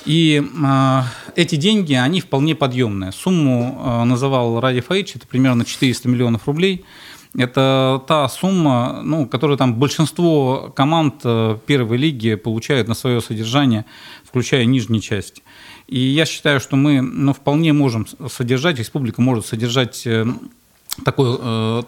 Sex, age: male, 40-59